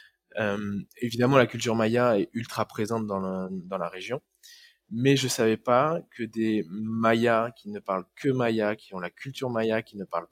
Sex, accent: male, French